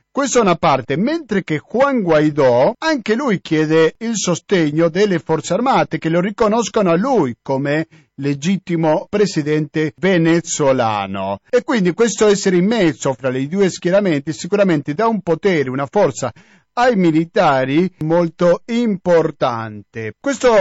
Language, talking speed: Italian, 135 wpm